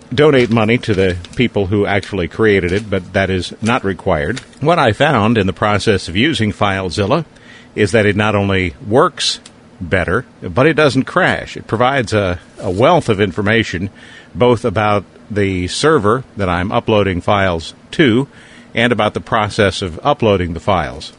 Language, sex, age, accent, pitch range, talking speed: English, male, 50-69, American, 95-120 Hz, 165 wpm